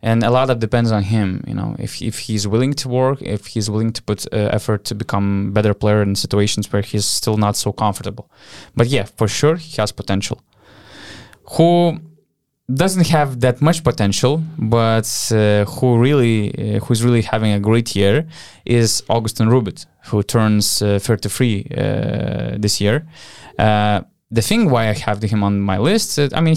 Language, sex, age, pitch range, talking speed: English, male, 20-39, 105-135 Hz, 185 wpm